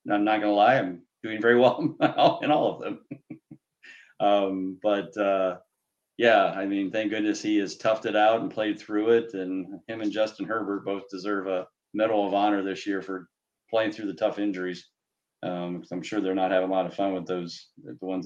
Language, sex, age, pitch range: English, male, 30-49, 105-145 Hz